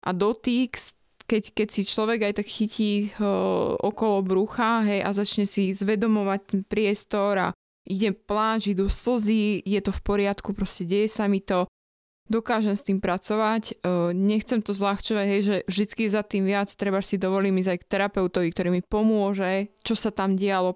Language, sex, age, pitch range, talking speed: Slovak, female, 20-39, 190-215 Hz, 175 wpm